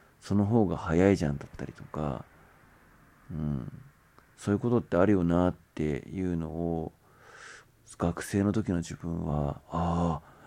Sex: male